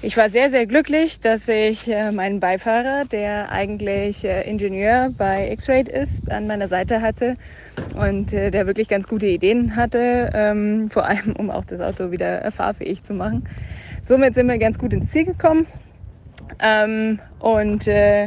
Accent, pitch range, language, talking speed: German, 195-230 Hz, German, 150 wpm